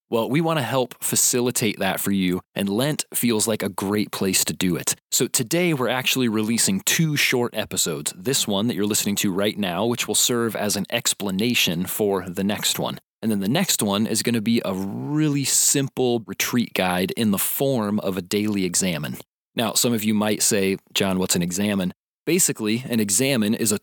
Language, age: English, 20-39